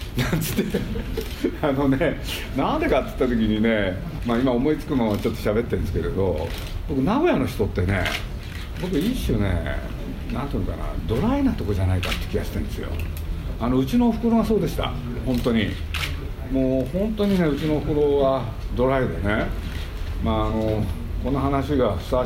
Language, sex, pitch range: Japanese, male, 85-130 Hz